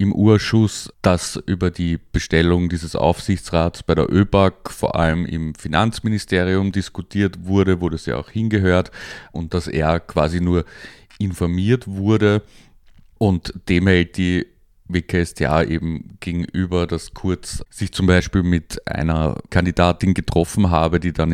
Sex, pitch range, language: male, 80-95 Hz, German